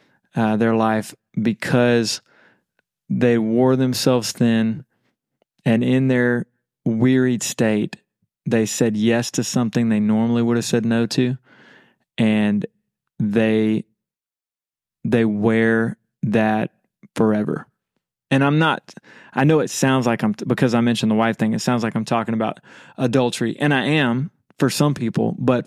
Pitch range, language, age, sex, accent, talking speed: 115-140 Hz, English, 20-39, male, American, 140 wpm